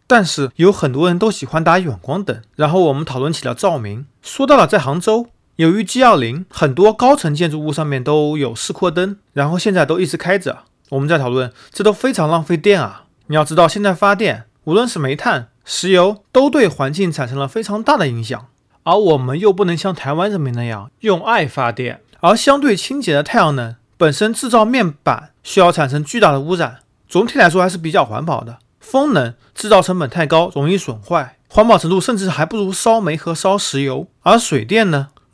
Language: Chinese